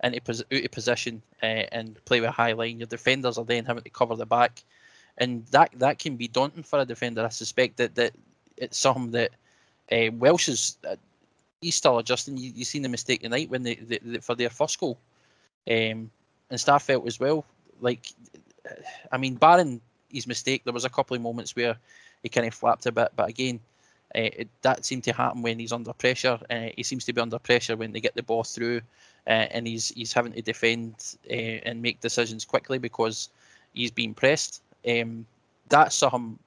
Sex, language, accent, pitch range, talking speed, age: male, English, British, 115-125 Hz, 200 wpm, 20-39